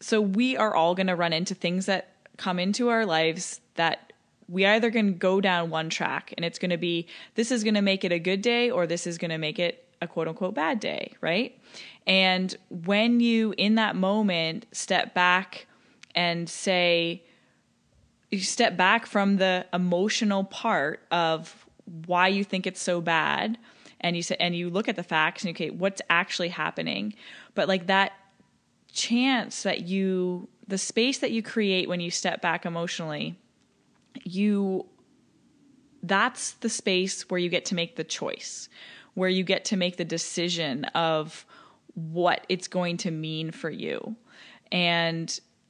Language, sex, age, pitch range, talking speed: English, female, 20-39, 170-210 Hz, 170 wpm